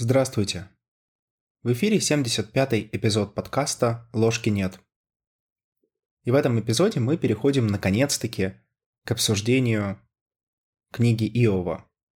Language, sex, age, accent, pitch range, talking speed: Russian, male, 20-39, native, 105-130 Hz, 95 wpm